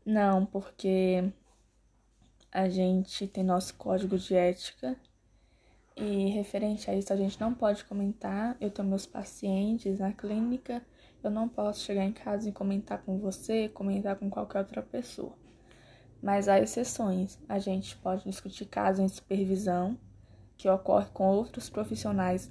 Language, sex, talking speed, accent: Portuguese, female, 145 wpm, Brazilian